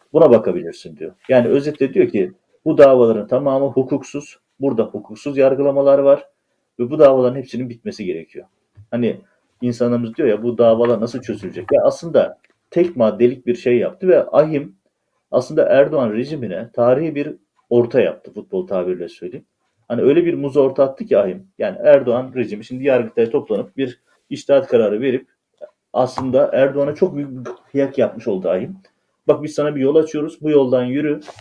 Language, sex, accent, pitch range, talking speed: Turkish, male, native, 120-150 Hz, 160 wpm